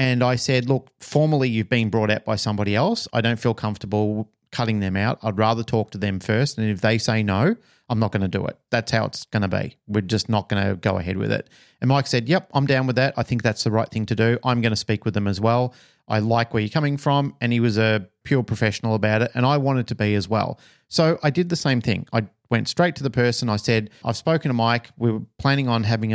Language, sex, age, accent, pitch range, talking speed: English, male, 40-59, Australian, 110-140 Hz, 275 wpm